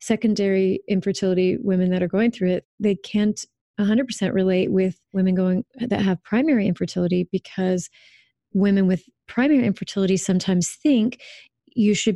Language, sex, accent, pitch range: English, female, American, 185-210 Hz